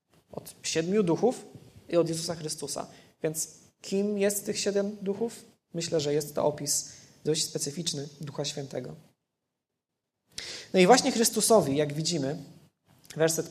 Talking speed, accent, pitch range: 130 wpm, native, 160-200 Hz